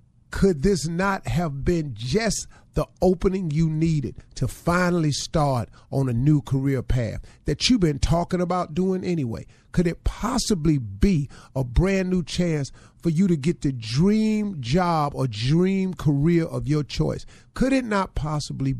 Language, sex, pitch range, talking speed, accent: English, male, 120-160 Hz, 160 wpm, American